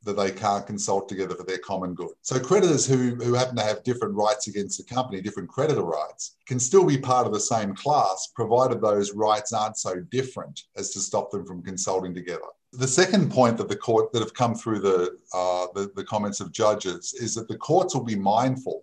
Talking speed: 220 wpm